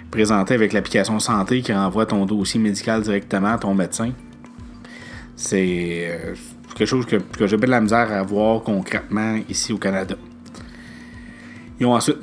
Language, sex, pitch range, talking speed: French, male, 105-120 Hz, 155 wpm